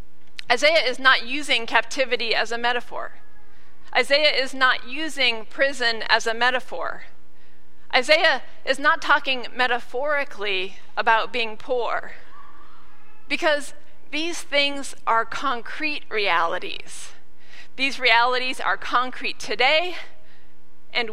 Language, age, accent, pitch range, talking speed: English, 40-59, American, 185-280 Hz, 100 wpm